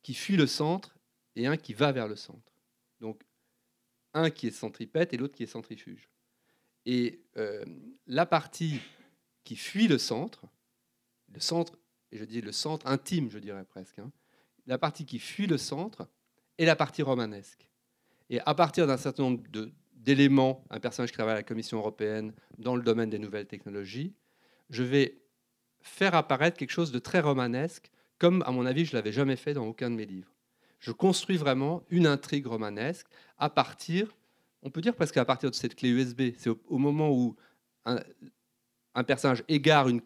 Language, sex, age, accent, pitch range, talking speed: French, male, 40-59, French, 120-155 Hz, 185 wpm